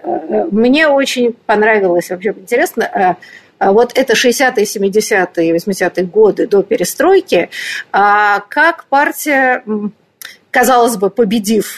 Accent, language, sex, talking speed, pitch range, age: native, Russian, female, 90 wpm, 205-290 Hz, 50-69